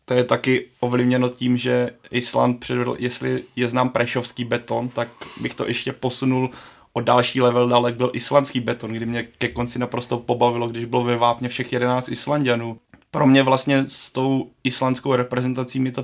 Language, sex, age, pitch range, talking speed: Czech, male, 20-39, 120-125 Hz, 175 wpm